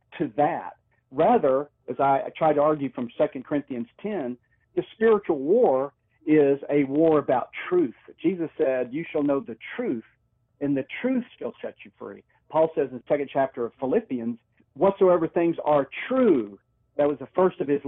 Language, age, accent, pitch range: English, 50-69, American, 125-170 Hz